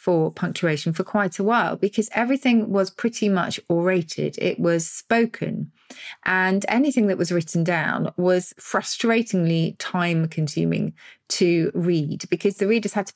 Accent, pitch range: British, 160-210 Hz